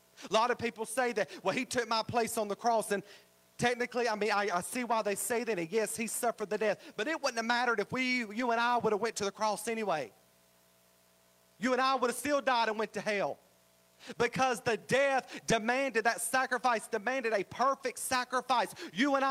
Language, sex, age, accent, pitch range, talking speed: English, male, 40-59, American, 215-260 Hz, 220 wpm